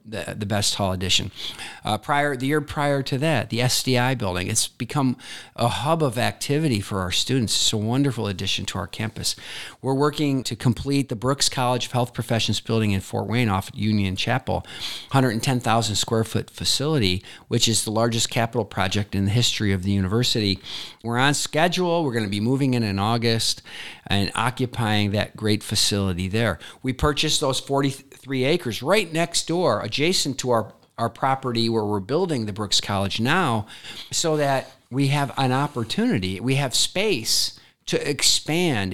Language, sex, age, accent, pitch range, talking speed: English, male, 50-69, American, 105-135 Hz, 175 wpm